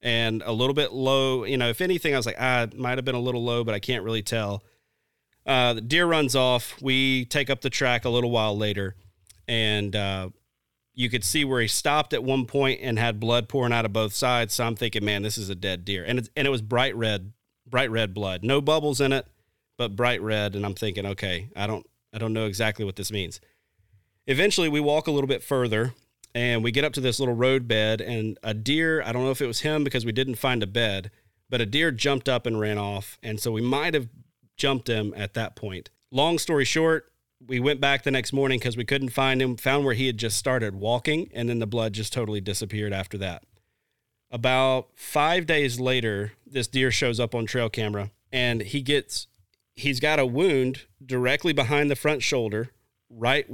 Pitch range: 110-135 Hz